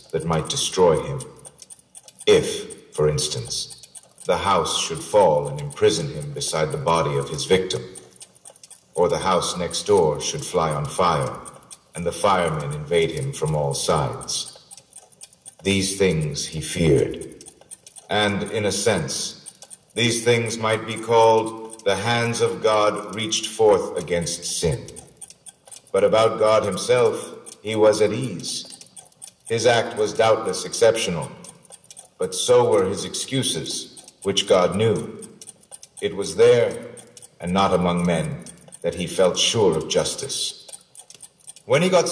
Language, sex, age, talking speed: English, male, 50-69, 135 wpm